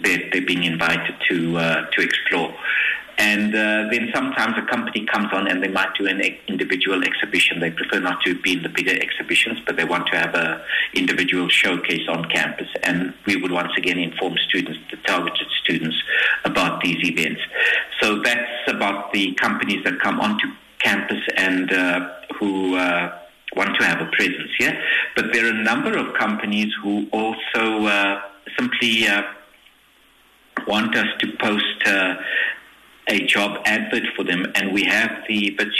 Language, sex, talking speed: English, male, 170 wpm